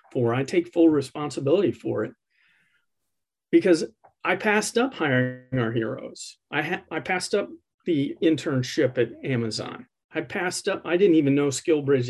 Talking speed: 155 wpm